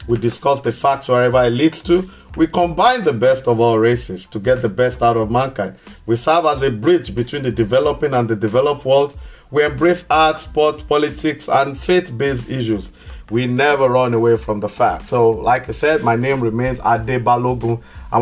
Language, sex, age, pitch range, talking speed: English, male, 50-69, 110-145 Hz, 195 wpm